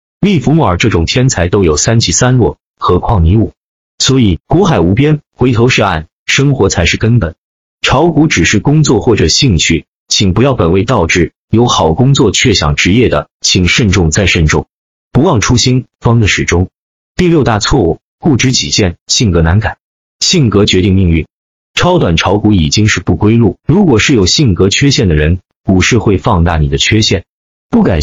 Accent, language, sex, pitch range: native, Chinese, male, 90-125 Hz